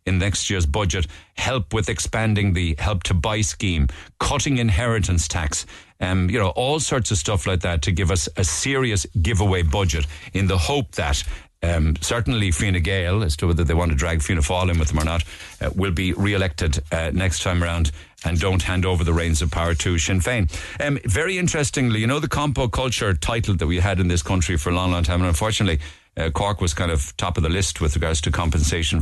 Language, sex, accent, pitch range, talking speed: English, male, Irish, 85-110 Hz, 215 wpm